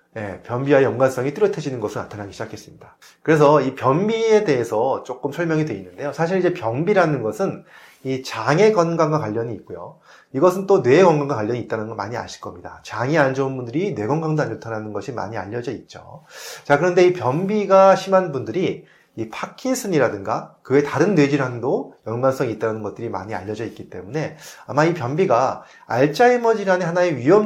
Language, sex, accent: Korean, male, native